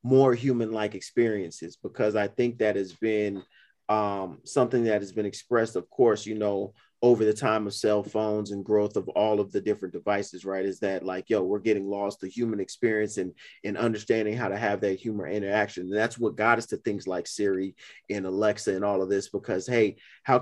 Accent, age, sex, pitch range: American, 30-49, male, 100-110 Hz